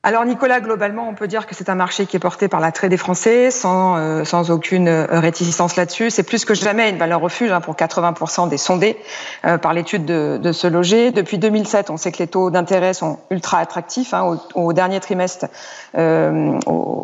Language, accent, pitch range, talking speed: French, French, 170-210 Hz, 210 wpm